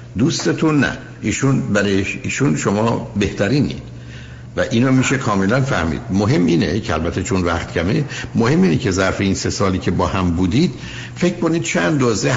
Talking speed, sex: 155 wpm, male